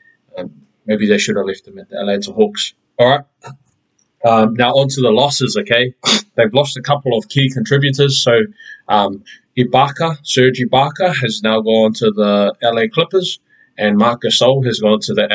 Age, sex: 20-39, male